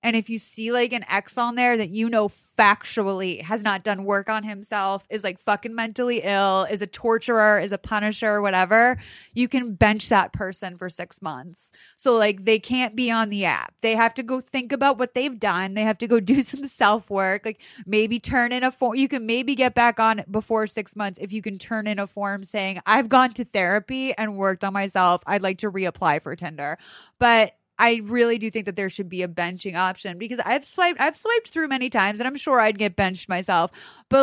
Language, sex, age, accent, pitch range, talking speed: English, female, 20-39, American, 195-245 Hz, 225 wpm